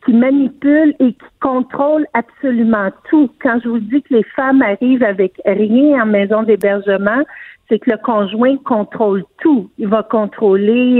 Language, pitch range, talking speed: French, 215-270 Hz, 160 wpm